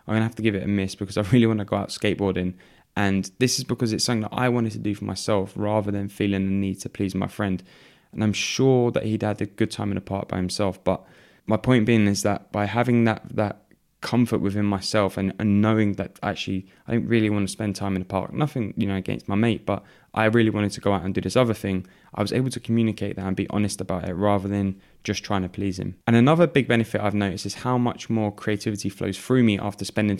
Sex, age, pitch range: male, 10-29, 100-115 Hz